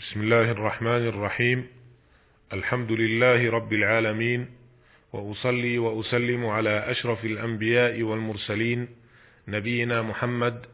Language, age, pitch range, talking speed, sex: Arabic, 40-59, 115-130 Hz, 90 wpm, male